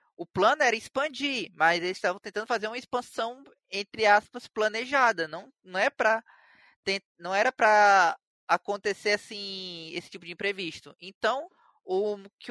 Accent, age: Brazilian, 20-39